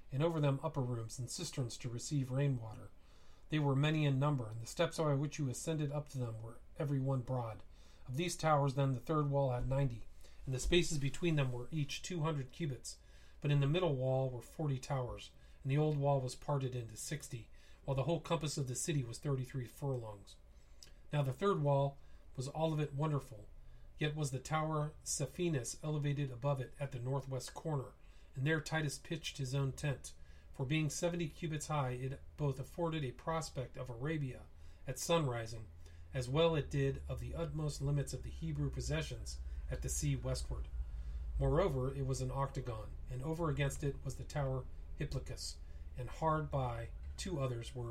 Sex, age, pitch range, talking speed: male, 40-59, 115-150 Hz, 190 wpm